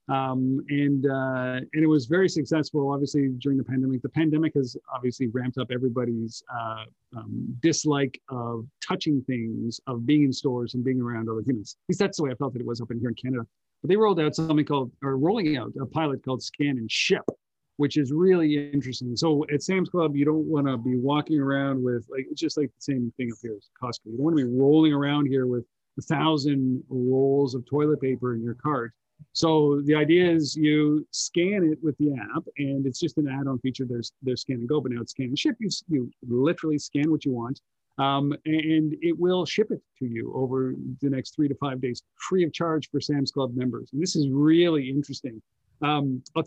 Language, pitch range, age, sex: English, 125-150 Hz, 40-59, male